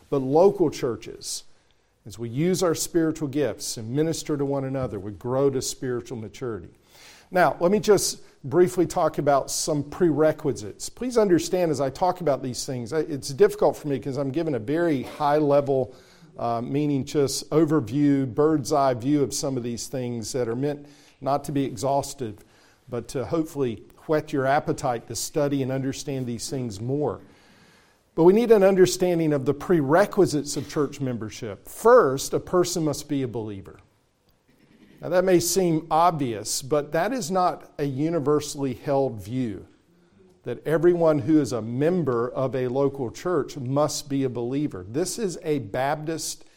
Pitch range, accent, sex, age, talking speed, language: 130-160 Hz, American, male, 50-69, 160 wpm, English